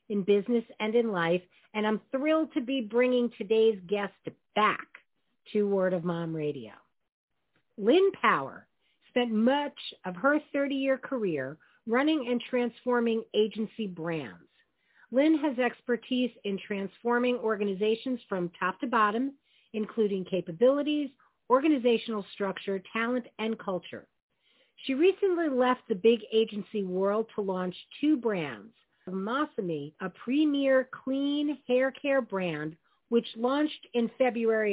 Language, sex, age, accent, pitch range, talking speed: English, female, 50-69, American, 195-260 Hz, 125 wpm